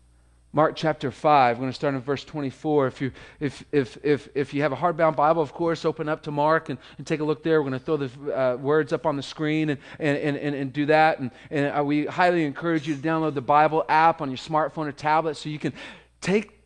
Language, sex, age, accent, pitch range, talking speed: English, male, 40-59, American, 135-160 Hz, 260 wpm